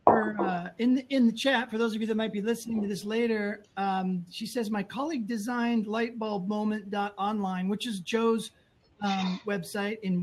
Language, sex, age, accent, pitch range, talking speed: English, male, 40-59, American, 180-225 Hz, 180 wpm